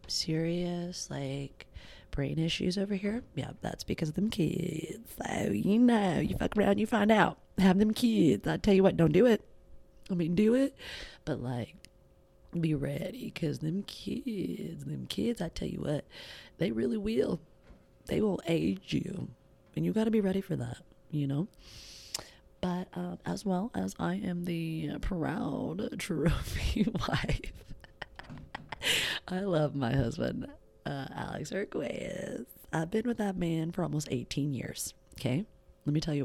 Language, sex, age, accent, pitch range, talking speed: English, female, 40-59, American, 150-195 Hz, 160 wpm